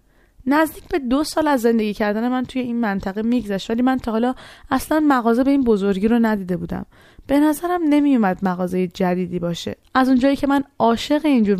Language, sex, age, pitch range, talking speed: Persian, female, 20-39, 205-265 Hz, 190 wpm